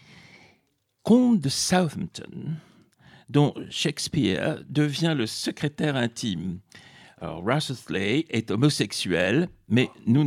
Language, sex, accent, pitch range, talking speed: French, male, French, 105-150 Hz, 90 wpm